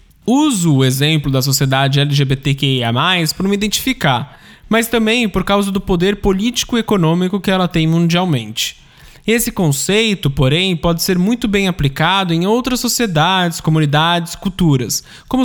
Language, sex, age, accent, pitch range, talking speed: Portuguese, male, 20-39, Brazilian, 145-205 Hz, 135 wpm